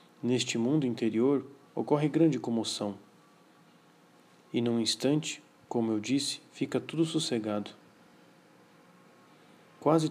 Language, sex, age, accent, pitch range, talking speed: Portuguese, male, 40-59, Brazilian, 110-130 Hz, 95 wpm